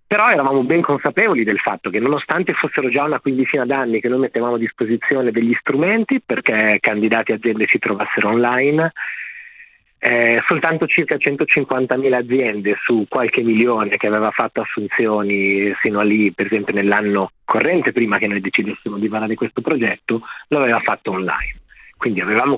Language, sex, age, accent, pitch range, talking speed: Italian, male, 30-49, native, 110-135 Hz, 160 wpm